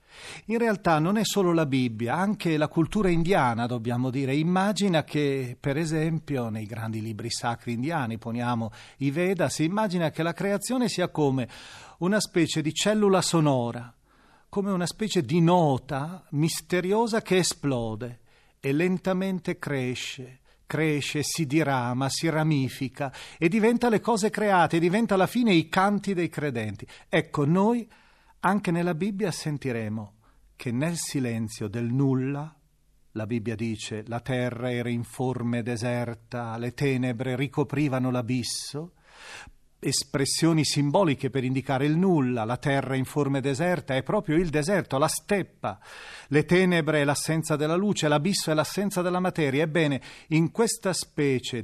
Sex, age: male, 40-59